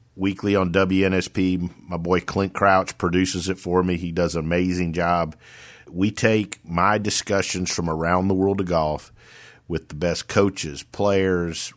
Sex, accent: male, American